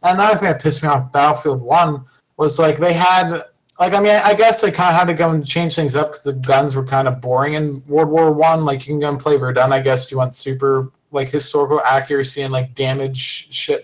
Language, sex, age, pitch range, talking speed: English, male, 20-39, 135-170 Hz, 250 wpm